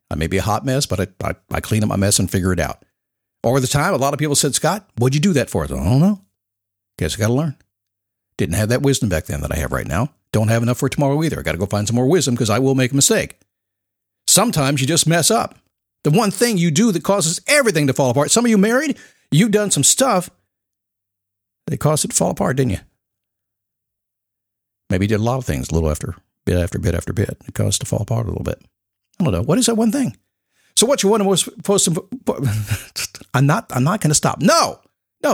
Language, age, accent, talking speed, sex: English, 50-69, American, 260 wpm, male